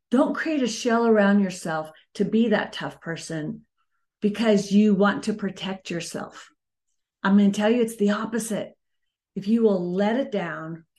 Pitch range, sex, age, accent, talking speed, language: 175-225 Hz, female, 40-59, American, 170 wpm, English